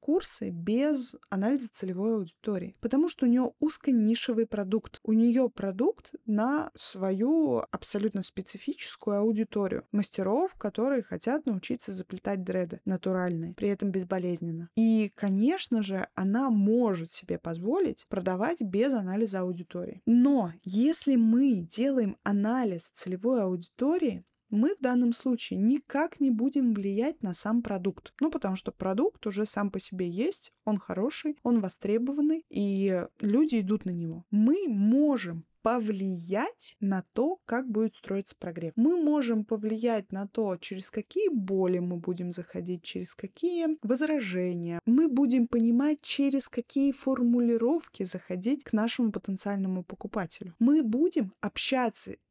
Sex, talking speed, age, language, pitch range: female, 130 wpm, 20-39, Russian, 195-260 Hz